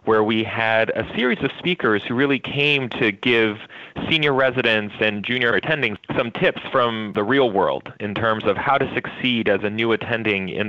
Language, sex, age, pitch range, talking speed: English, male, 30-49, 105-130 Hz, 190 wpm